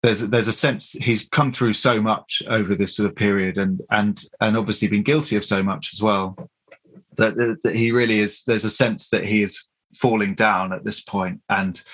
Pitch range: 100-110 Hz